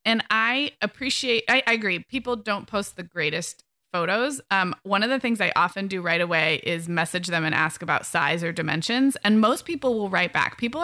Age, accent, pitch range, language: 20-39, American, 170-225 Hz, English